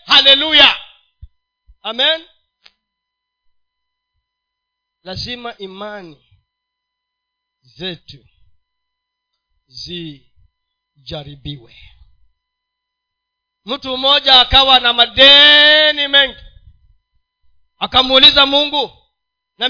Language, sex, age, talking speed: Swahili, male, 40-59, 45 wpm